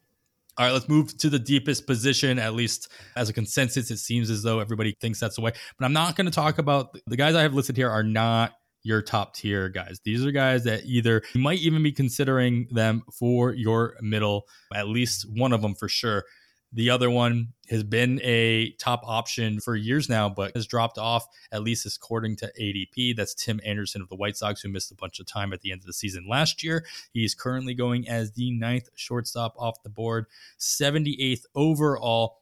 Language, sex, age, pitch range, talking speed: English, male, 20-39, 105-130 Hz, 215 wpm